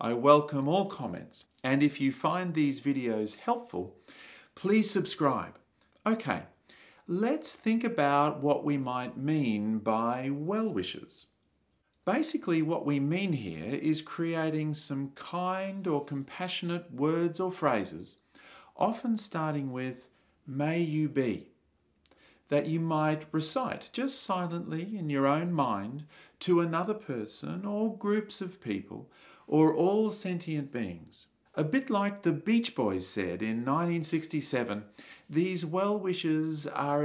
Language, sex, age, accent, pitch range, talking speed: English, male, 40-59, Australian, 135-180 Hz, 125 wpm